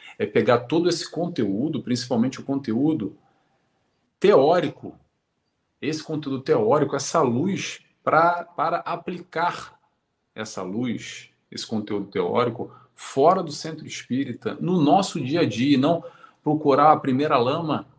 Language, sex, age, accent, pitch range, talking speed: Portuguese, male, 40-59, Brazilian, 130-170 Hz, 125 wpm